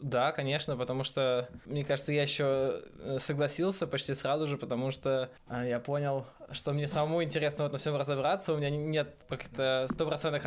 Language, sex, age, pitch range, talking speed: Russian, male, 20-39, 140-165 Hz, 165 wpm